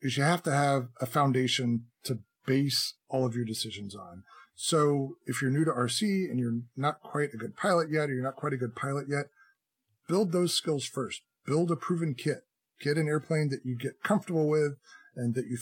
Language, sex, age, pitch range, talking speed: English, male, 40-59, 120-150 Hz, 210 wpm